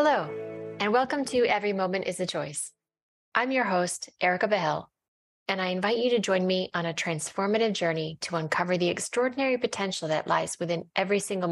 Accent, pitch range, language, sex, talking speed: American, 165-215 Hz, English, female, 180 wpm